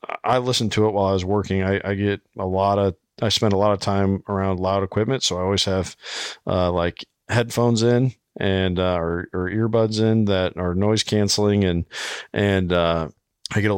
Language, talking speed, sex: English, 205 wpm, male